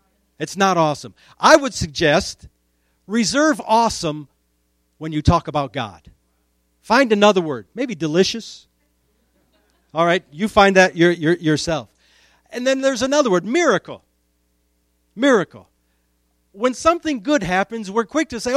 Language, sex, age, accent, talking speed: English, male, 50-69, American, 135 wpm